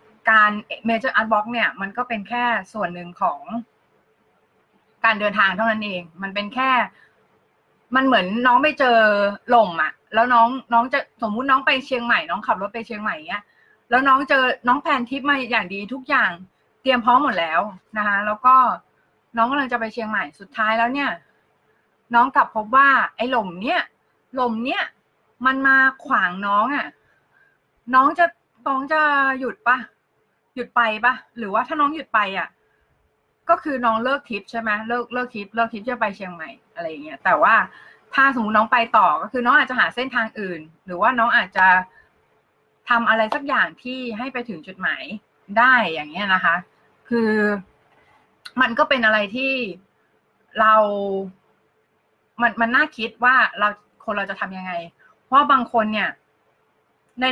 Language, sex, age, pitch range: Thai, female, 20-39, 210-260 Hz